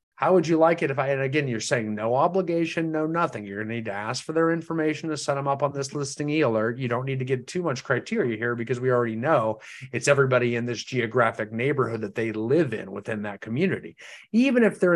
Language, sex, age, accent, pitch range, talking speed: English, male, 30-49, American, 120-160 Hz, 245 wpm